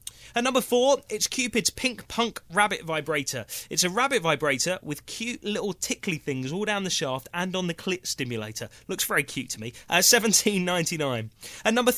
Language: English